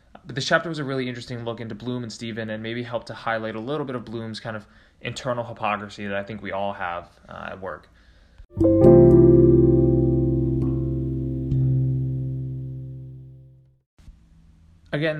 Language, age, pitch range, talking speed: English, 20-39, 100-125 Hz, 140 wpm